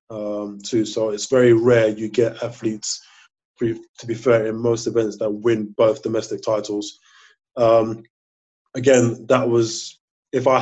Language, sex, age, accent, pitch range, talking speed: English, male, 20-39, British, 110-120 Hz, 145 wpm